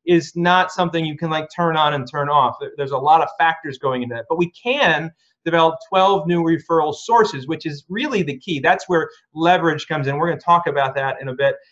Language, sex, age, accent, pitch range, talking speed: English, male, 30-49, American, 150-185 Hz, 235 wpm